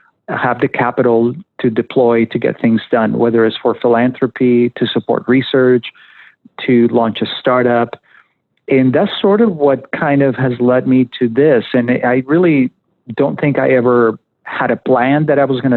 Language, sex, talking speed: English, male, 175 wpm